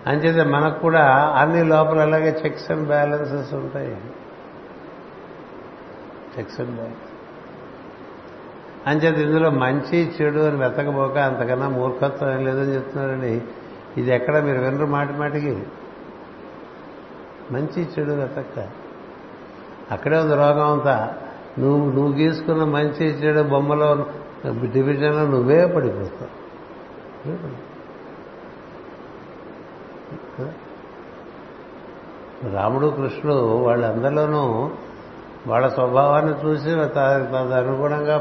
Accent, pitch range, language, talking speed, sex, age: native, 130-150 Hz, Telugu, 85 wpm, male, 60-79